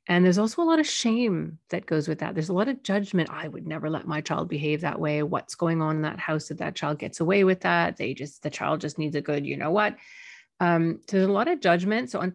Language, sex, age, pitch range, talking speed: English, female, 40-59, 155-190 Hz, 275 wpm